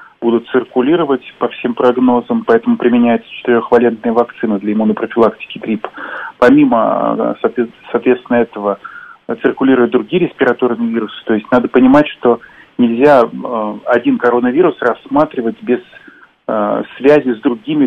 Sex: male